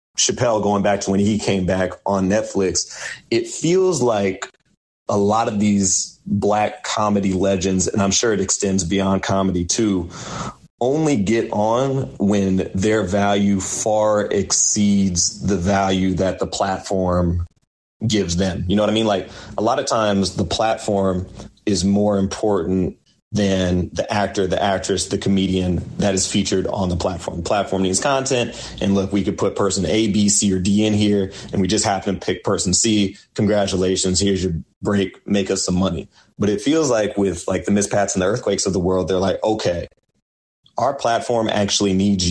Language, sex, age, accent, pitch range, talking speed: English, male, 30-49, American, 95-105 Hz, 175 wpm